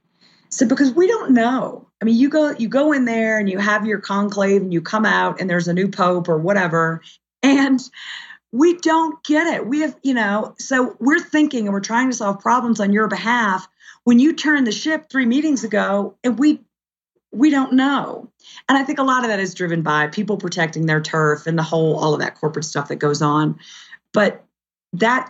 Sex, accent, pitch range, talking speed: female, American, 165-235 Hz, 215 wpm